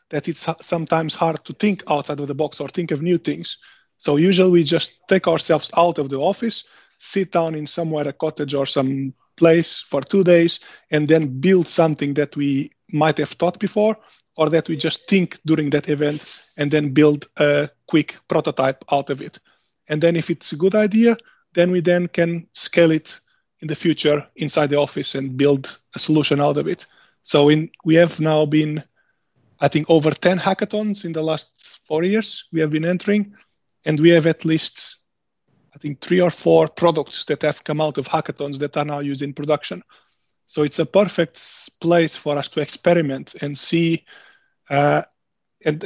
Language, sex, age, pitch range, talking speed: English, male, 20-39, 150-175 Hz, 190 wpm